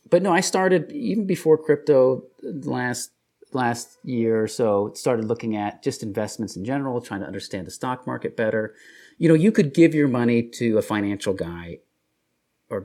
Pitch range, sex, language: 105-145 Hz, male, English